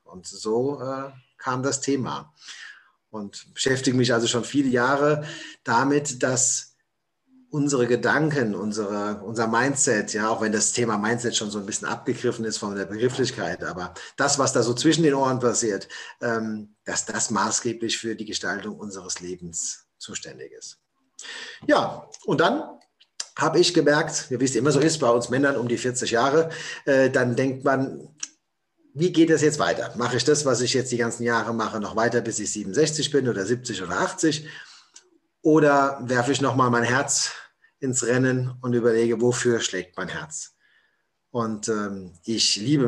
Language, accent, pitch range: German, German, 115-140 Hz